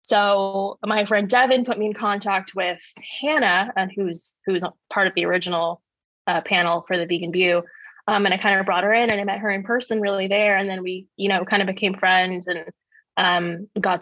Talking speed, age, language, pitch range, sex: 220 wpm, 20-39, English, 185-215 Hz, female